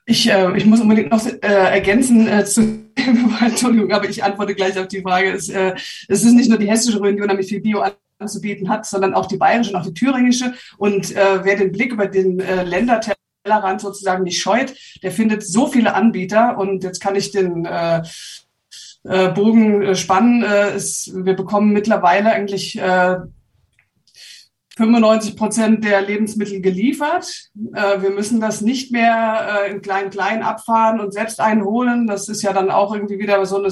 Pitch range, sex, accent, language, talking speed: 195-225 Hz, female, German, German, 180 wpm